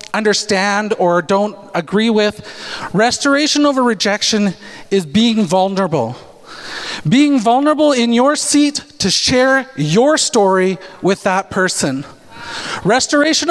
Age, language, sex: 40-59, Japanese, male